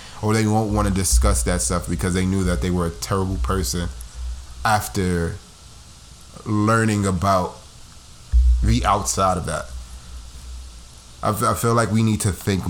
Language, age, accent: English, 20-39, American